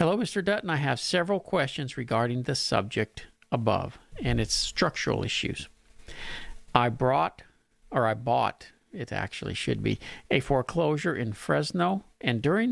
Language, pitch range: English, 120-170 Hz